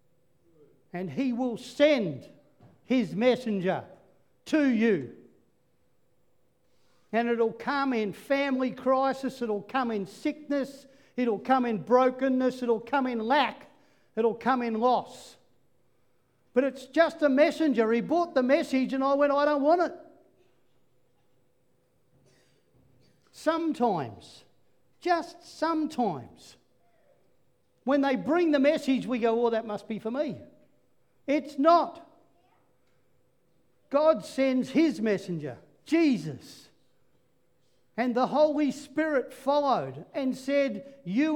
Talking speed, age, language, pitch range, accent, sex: 110 wpm, 60-79, English, 190-285 Hz, Australian, male